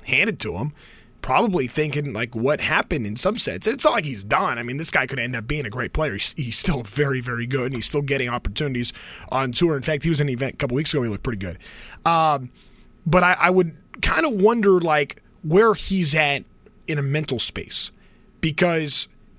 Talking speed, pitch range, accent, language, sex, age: 225 wpm, 145-185 Hz, American, English, male, 20-39